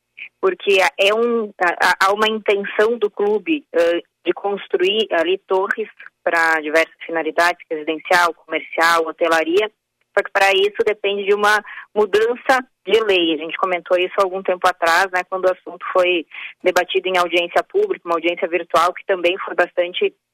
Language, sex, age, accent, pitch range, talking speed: Portuguese, female, 20-39, Brazilian, 170-200 Hz, 155 wpm